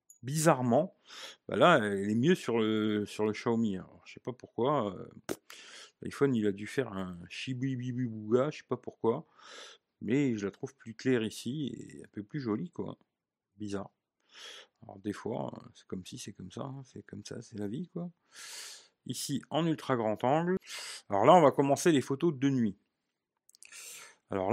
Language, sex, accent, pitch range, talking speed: French, male, French, 105-155 Hz, 180 wpm